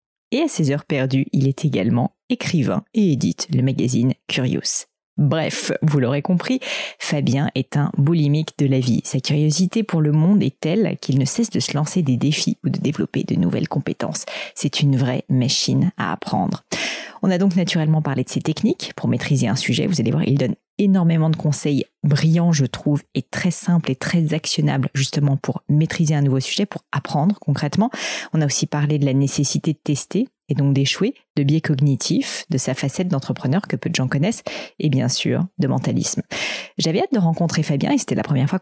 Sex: female